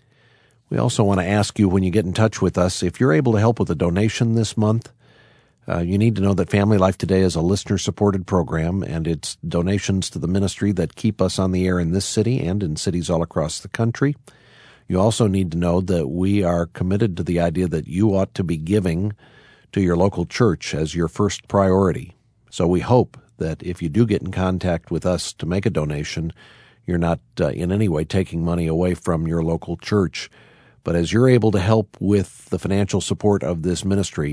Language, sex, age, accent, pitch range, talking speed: English, male, 50-69, American, 90-110 Hz, 220 wpm